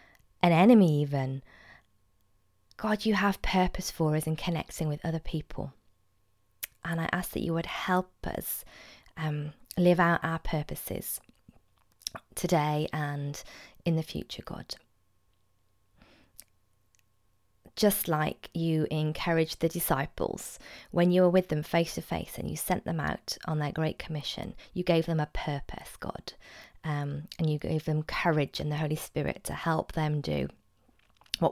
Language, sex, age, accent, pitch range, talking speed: English, female, 20-39, British, 145-175 Hz, 145 wpm